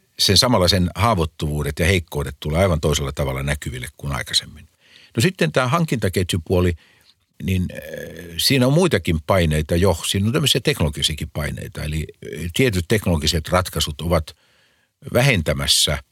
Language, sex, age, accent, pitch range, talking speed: Finnish, male, 50-69, native, 75-100 Hz, 125 wpm